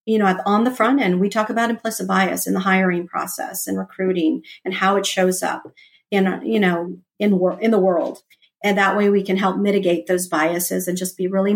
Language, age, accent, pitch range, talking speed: English, 40-59, American, 185-205 Hz, 225 wpm